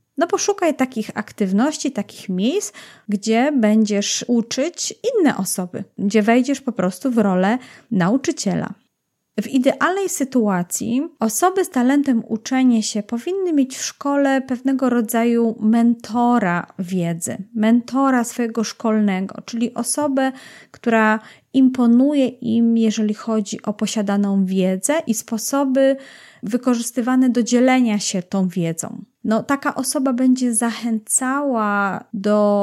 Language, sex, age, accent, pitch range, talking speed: Polish, female, 30-49, native, 210-260 Hz, 110 wpm